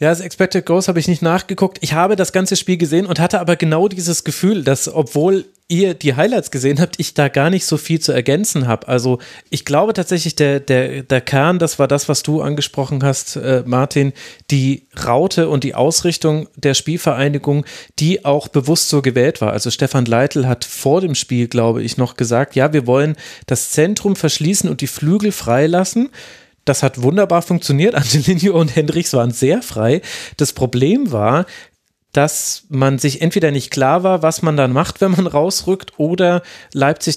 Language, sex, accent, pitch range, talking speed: German, male, German, 135-170 Hz, 185 wpm